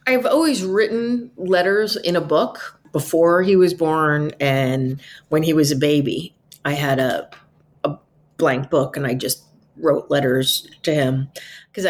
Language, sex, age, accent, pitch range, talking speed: English, female, 40-59, American, 155-215 Hz, 155 wpm